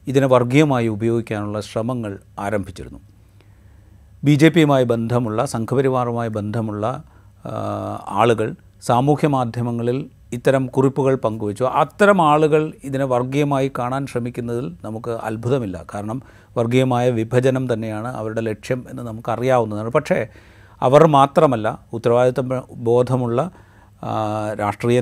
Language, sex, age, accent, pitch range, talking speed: Malayalam, male, 30-49, native, 105-130 Hz, 90 wpm